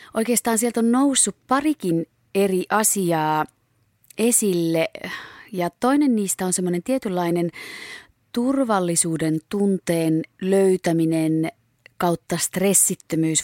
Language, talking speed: Finnish, 85 wpm